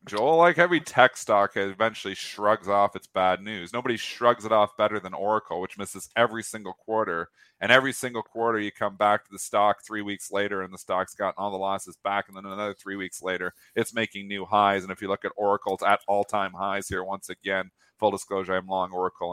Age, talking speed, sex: 40-59, 220 wpm, male